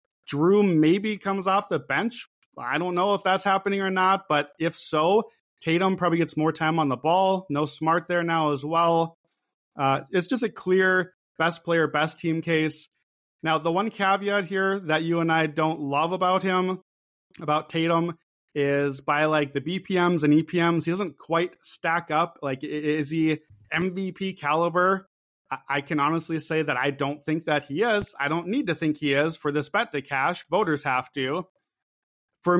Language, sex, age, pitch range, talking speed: English, male, 30-49, 150-180 Hz, 185 wpm